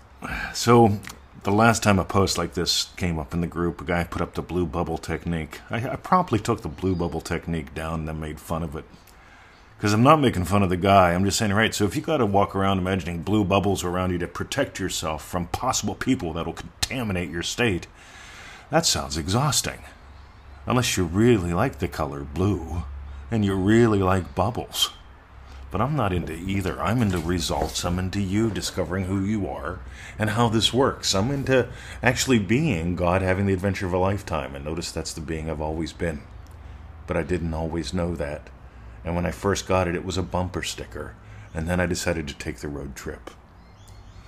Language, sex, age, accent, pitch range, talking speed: English, male, 40-59, American, 80-105 Hz, 200 wpm